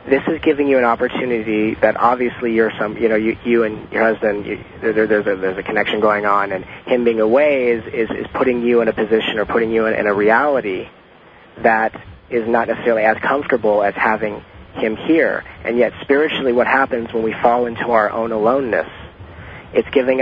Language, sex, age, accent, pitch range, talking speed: English, male, 40-59, American, 110-130 Hz, 210 wpm